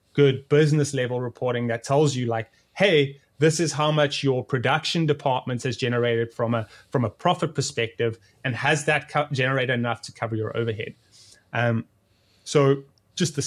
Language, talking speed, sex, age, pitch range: English, 170 wpm, male, 20-39, 120-155 Hz